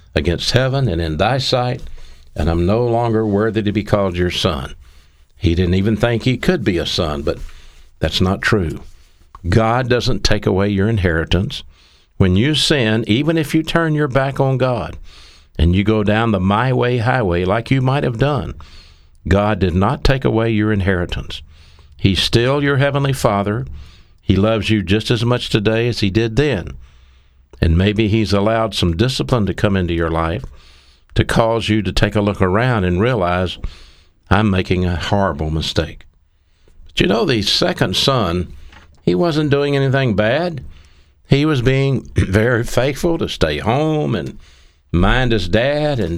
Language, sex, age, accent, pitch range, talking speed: English, male, 60-79, American, 80-120 Hz, 170 wpm